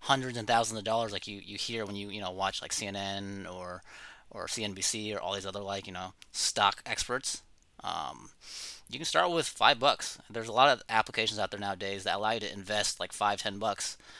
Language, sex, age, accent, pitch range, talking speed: English, male, 20-39, American, 100-125 Hz, 220 wpm